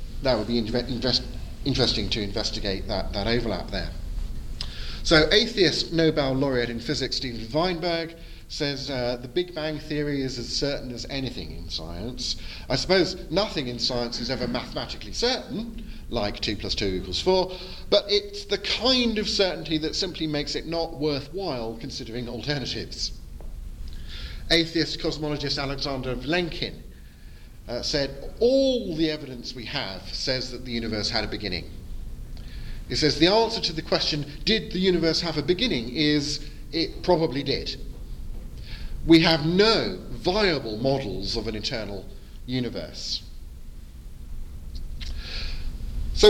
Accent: British